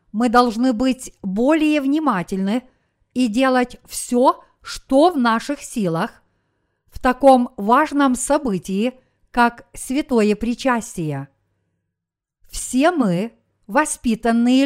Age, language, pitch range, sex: 50-69, Russian, 210-255 Hz, female